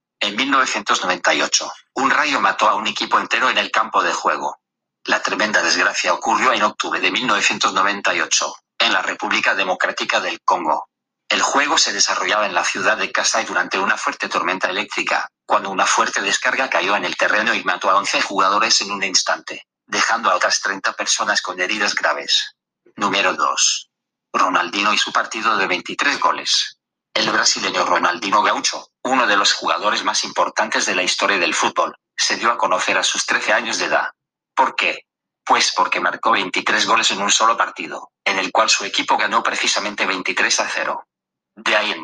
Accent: Spanish